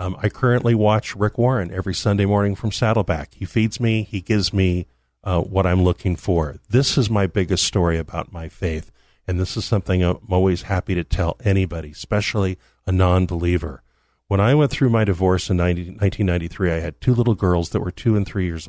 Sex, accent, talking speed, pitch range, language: male, American, 200 wpm, 80-105 Hz, English